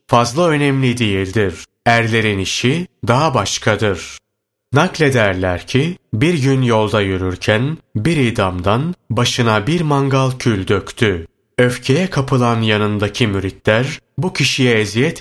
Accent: native